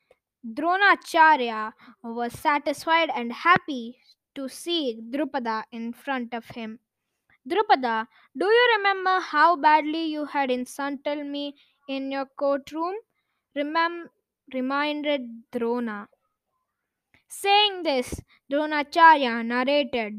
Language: English